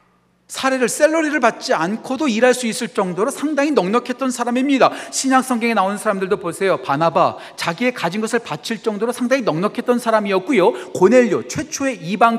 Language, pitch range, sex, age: Korean, 185-255 Hz, male, 40-59